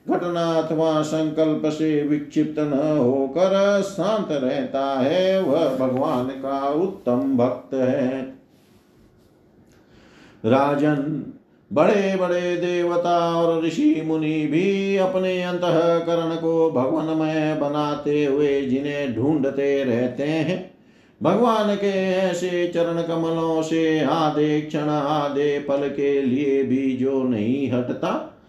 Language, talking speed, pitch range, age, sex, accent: Hindi, 105 wpm, 140-175 Hz, 50-69, male, native